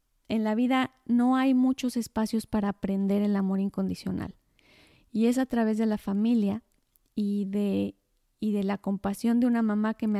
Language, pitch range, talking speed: Spanish, 215-250 Hz, 175 wpm